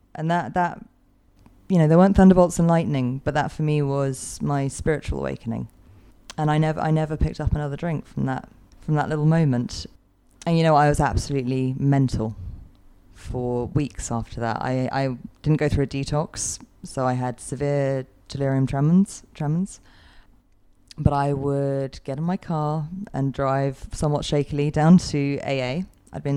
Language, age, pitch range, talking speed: English, 20-39, 125-155 Hz, 170 wpm